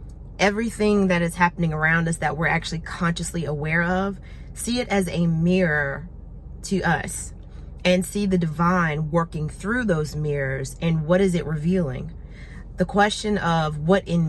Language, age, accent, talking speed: English, 30-49, American, 155 wpm